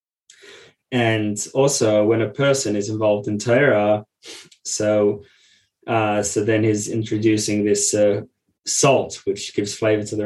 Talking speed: 135 wpm